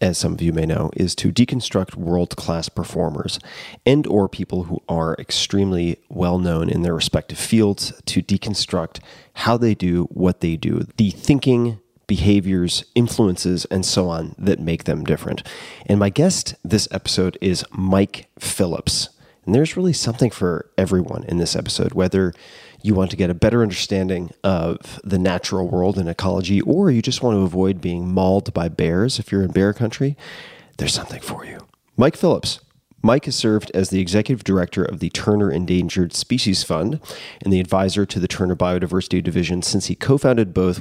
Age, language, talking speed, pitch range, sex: 30-49, English, 175 wpm, 90-105 Hz, male